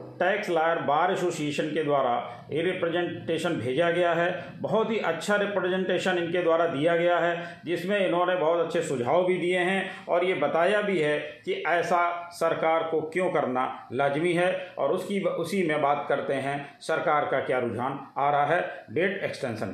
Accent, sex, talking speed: native, male, 175 wpm